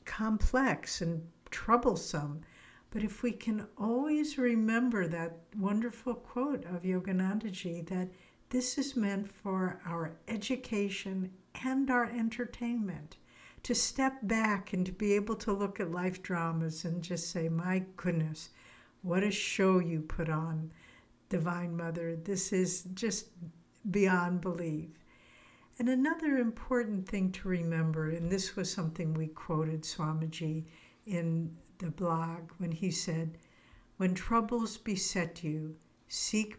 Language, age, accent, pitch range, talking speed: English, 60-79, American, 170-230 Hz, 130 wpm